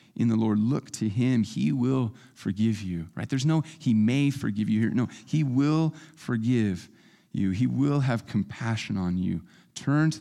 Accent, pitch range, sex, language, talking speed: American, 105-135 Hz, male, English, 180 wpm